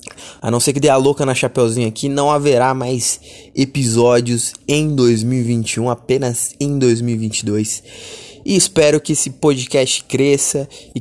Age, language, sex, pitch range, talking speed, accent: 20-39, Portuguese, male, 100-140 Hz, 140 wpm, Brazilian